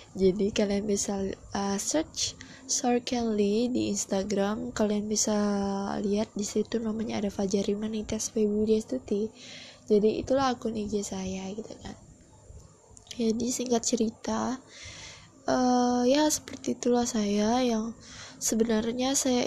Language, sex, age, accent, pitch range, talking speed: Indonesian, female, 20-39, native, 210-245 Hz, 110 wpm